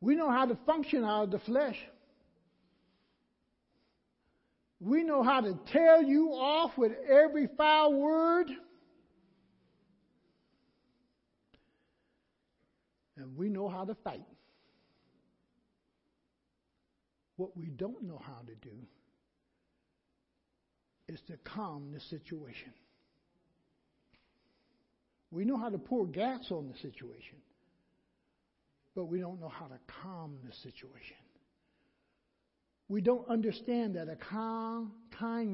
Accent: American